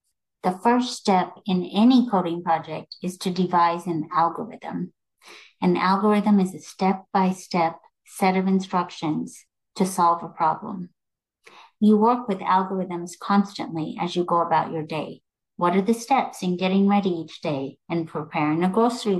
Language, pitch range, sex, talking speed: English, 170-205 Hz, female, 150 wpm